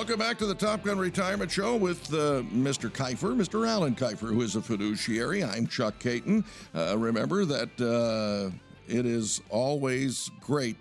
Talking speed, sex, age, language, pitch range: 165 wpm, male, 60-79, English, 115-155 Hz